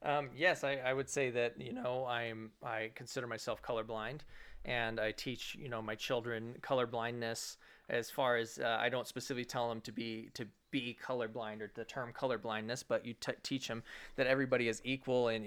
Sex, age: male, 20-39